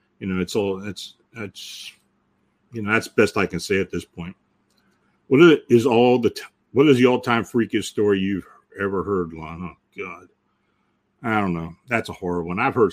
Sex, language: male, English